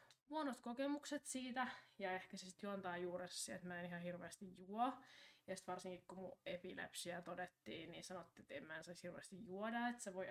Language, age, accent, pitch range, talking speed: Finnish, 20-39, native, 180-230 Hz, 180 wpm